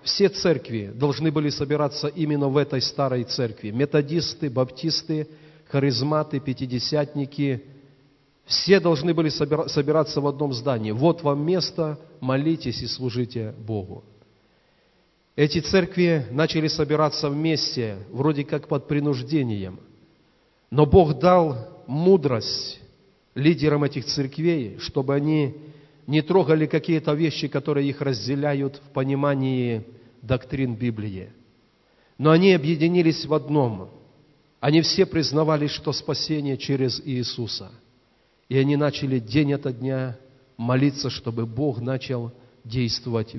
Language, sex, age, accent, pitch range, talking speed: Russian, male, 40-59, native, 125-155 Hz, 110 wpm